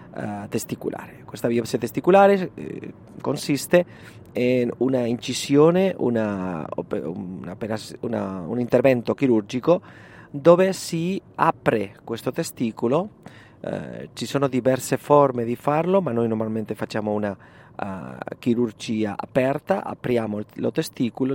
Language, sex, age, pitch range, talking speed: Italian, male, 30-49, 110-145 Hz, 110 wpm